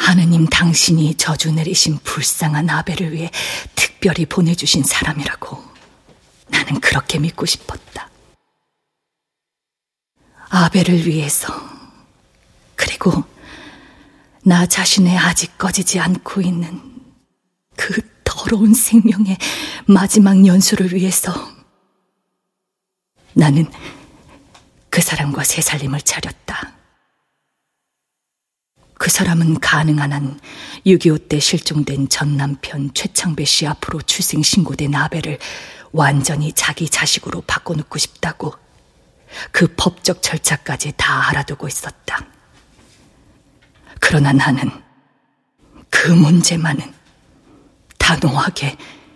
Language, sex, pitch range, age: Korean, female, 150-185 Hz, 30-49